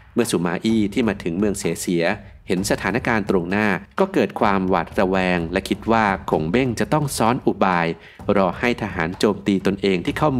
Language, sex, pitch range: Thai, male, 90-115 Hz